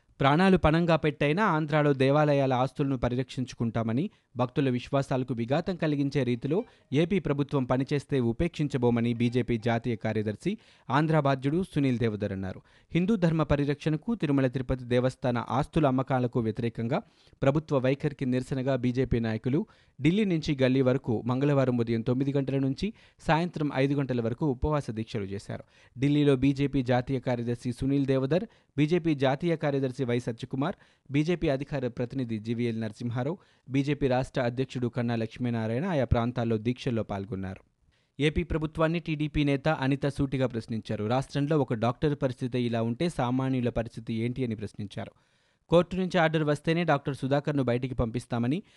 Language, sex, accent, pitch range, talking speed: Telugu, male, native, 120-145 Hz, 130 wpm